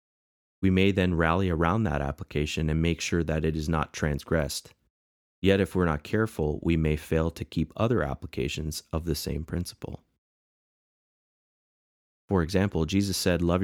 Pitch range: 75-95 Hz